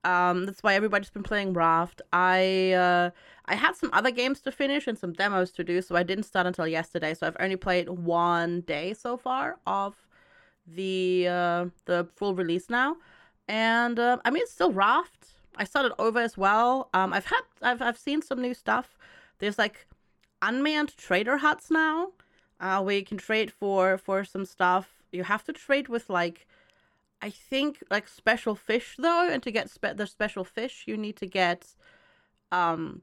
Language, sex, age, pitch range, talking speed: English, female, 30-49, 175-235 Hz, 185 wpm